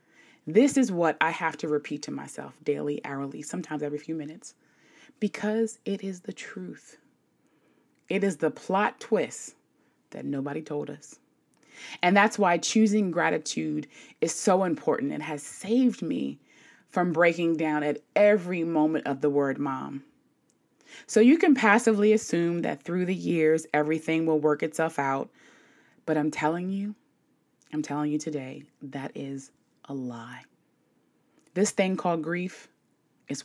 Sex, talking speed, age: female, 145 wpm, 20-39